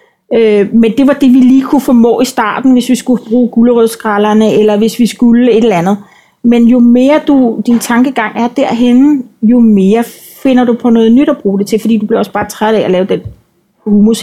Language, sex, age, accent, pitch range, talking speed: Danish, female, 40-59, native, 205-240 Hz, 220 wpm